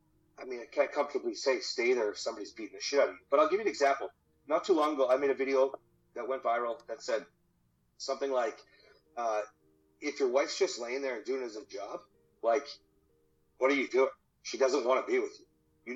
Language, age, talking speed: English, 30-49, 235 wpm